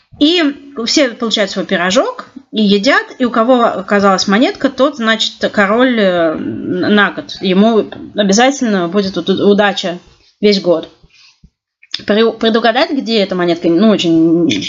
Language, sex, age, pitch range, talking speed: Russian, female, 30-49, 185-230 Hz, 120 wpm